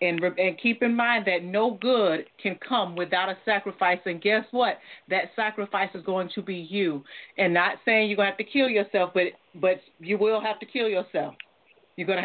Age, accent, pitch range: 40-59, American, 175-210 Hz